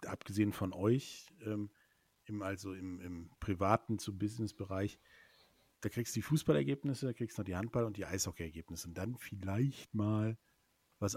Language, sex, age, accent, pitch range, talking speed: German, male, 50-69, German, 95-115 Hz, 155 wpm